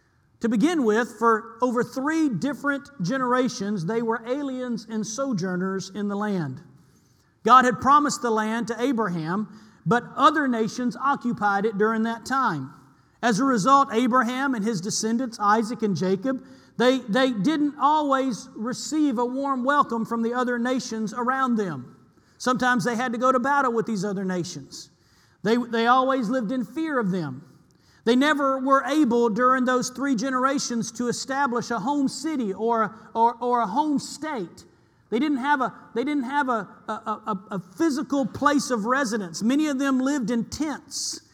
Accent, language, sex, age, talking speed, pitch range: American, English, male, 40-59, 155 wpm, 215-275 Hz